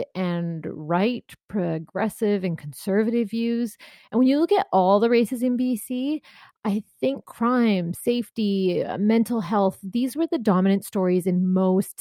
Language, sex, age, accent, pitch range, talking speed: English, female, 30-49, American, 180-235 Hz, 145 wpm